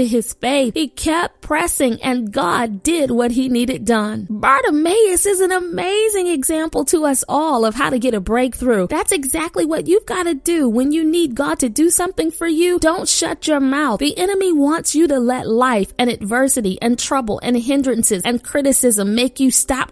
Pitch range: 245-320 Hz